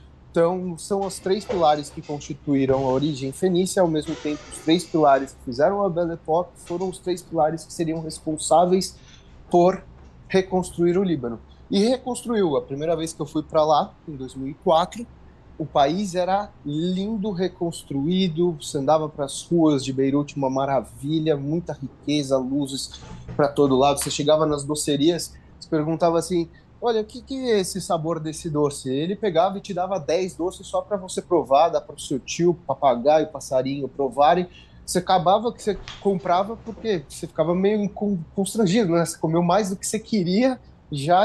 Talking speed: 170 wpm